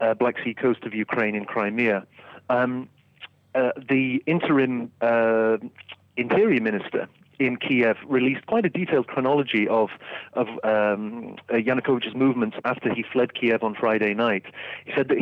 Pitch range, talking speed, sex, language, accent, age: 110-130 Hz, 150 wpm, male, English, British, 30-49